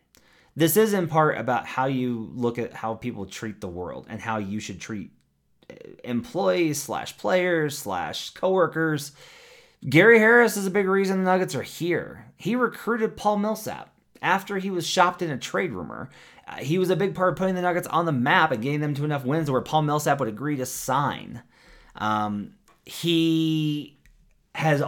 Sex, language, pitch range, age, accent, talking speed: male, English, 125-175 Hz, 30-49, American, 180 wpm